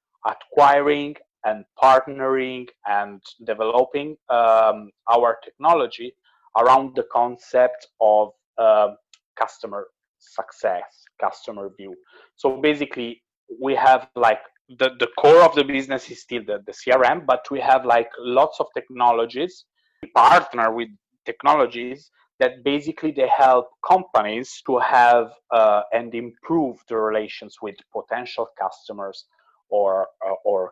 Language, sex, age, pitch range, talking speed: English, male, 30-49, 115-160 Hz, 120 wpm